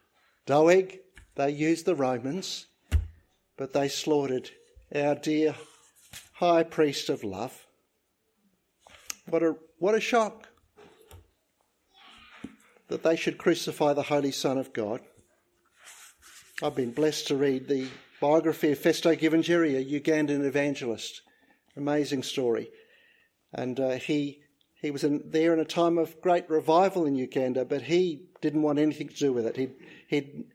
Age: 50-69